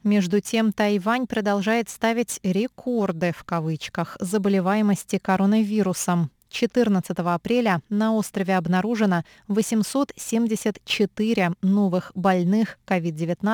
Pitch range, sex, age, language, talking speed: 185-225 Hz, female, 20-39, Russian, 85 wpm